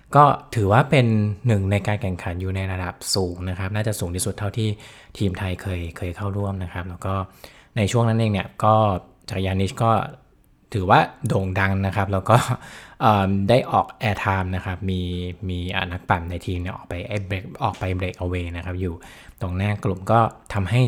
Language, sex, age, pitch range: Thai, male, 20-39, 90-110 Hz